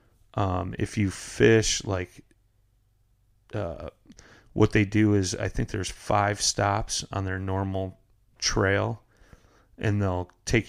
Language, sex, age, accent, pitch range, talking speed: English, male, 30-49, American, 95-105 Hz, 125 wpm